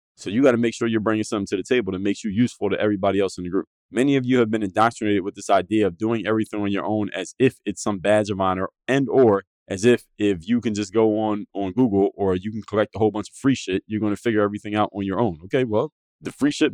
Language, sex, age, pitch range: English, male, 20-39, 100-125 Hz